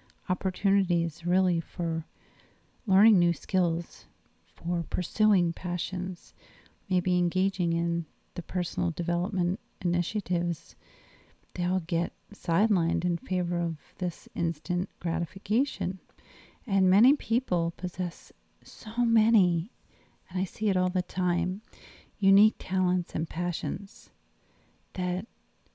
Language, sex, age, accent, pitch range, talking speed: English, female, 40-59, American, 170-185 Hz, 105 wpm